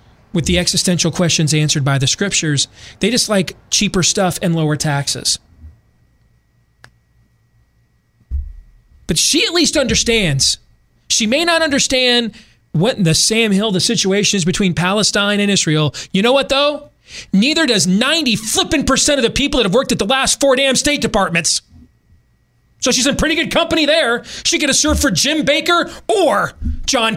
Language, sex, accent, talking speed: English, male, American, 165 wpm